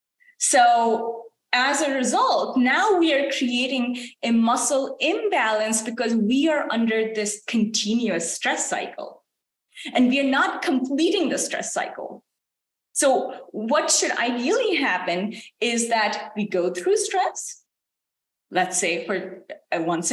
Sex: female